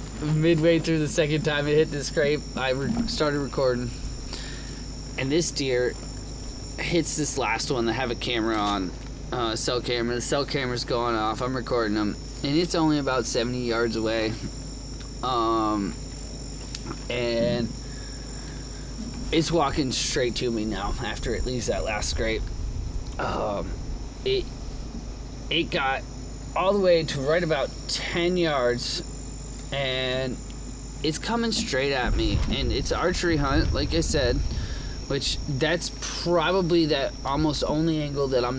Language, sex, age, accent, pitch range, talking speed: English, male, 20-39, American, 120-155 Hz, 140 wpm